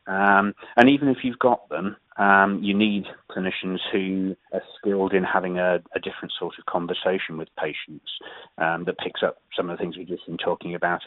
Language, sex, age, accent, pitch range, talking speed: English, male, 30-49, British, 90-105 Hz, 200 wpm